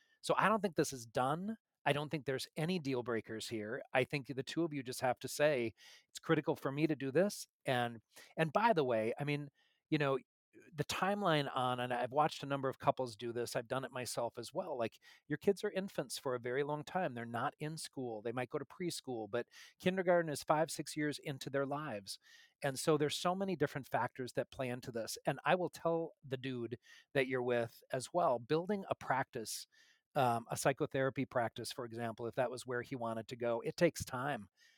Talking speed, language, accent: 225 wpm, English, American